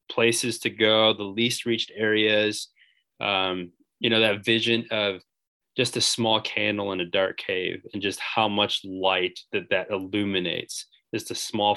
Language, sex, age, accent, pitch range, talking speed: English, male, 20-39, American, 95-115 Hz, 165 wpm